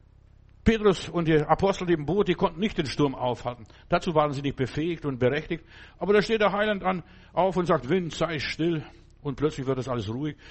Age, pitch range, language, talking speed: 60-79, 120-170 Hz, German, 215 wpm